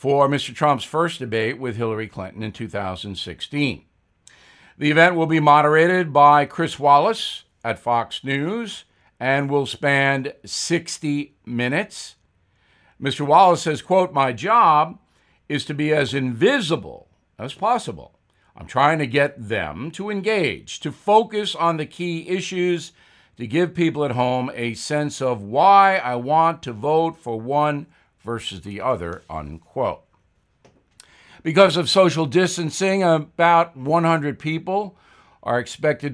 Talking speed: 135 wpm